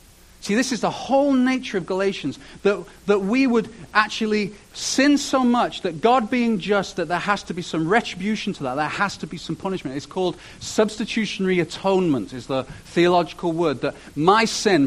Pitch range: 125-195 Hz